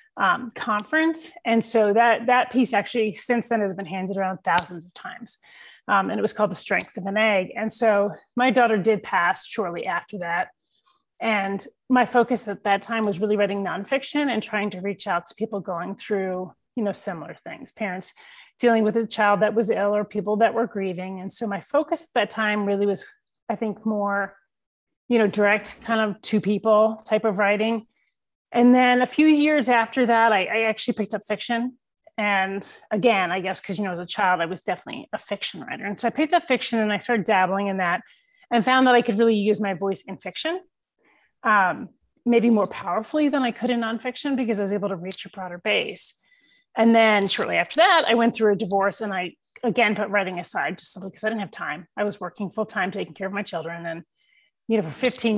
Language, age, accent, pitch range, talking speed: English, 30-49, American, 195-240 Hz, 220 wpm